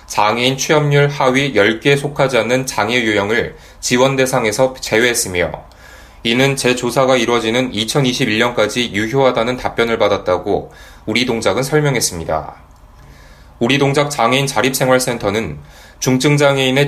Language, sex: Korean, male